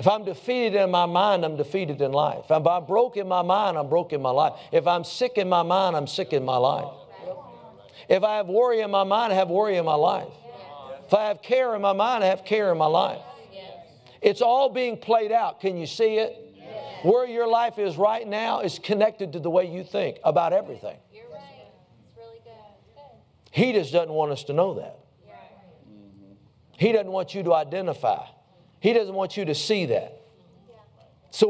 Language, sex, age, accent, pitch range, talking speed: English, male, 50-69, American, 145-205 Hz, 200 wpm